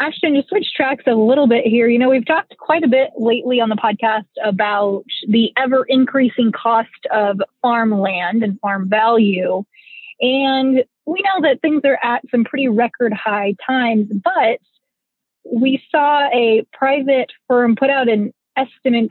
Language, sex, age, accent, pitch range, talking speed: English, female, 20-39, American, 220-270 Hz, 155 wpm